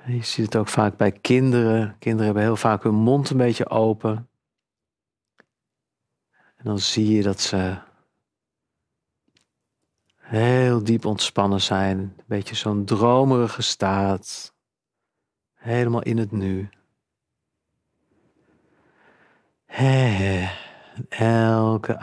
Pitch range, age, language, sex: 100-120 Hz, 50-69, Dutch, male